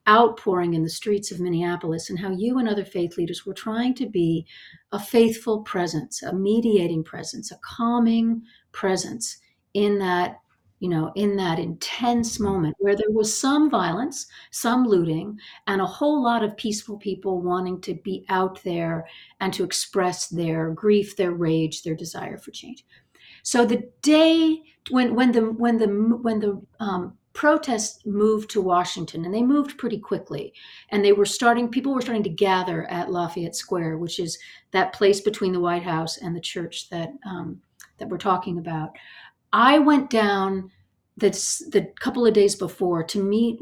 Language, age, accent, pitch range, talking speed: English, 50-69, American, 180-230 Hz, 170 wpm